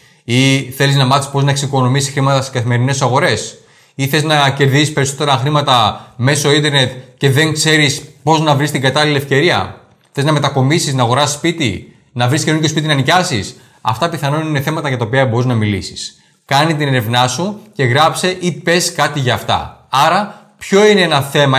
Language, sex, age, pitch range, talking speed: Greek, male, 20-39, 125-145 Hz, 185 wpm